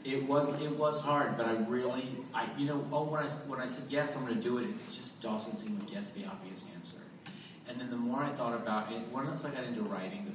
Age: 40-59